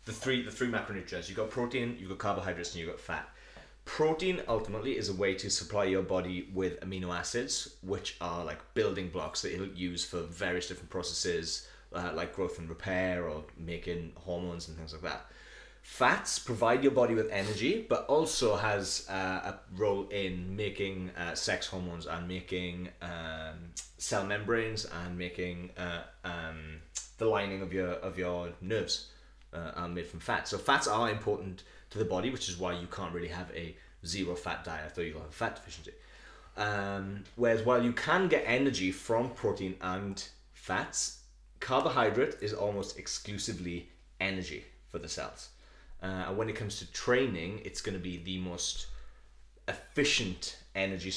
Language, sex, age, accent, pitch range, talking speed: English, male, 30-49, British, 85-100 Hz, 175 wpm